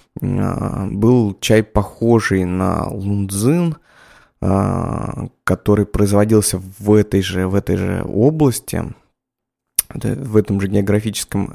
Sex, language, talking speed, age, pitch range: male, Russian, 95 wpm, 20-39, 100-115 Hz